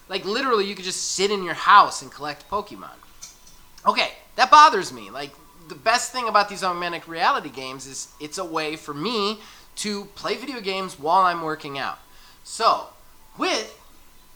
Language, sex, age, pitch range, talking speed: English, male, 20-39, 140-195 Hz, 170 wpm